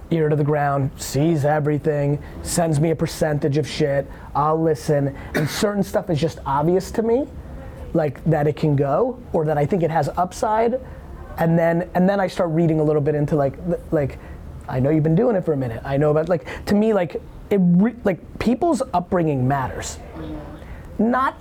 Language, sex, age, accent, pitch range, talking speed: English, male, 30-49, American, 140-185 Hz, 195 wpm